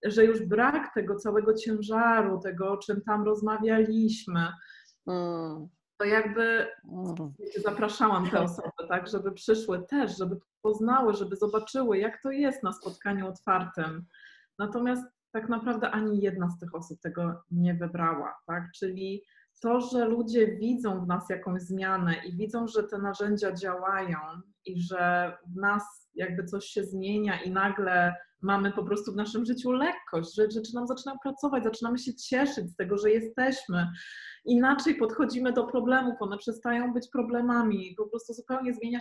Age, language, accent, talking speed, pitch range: 20-39, Polish, native, 150 wpm, 190-240 Hz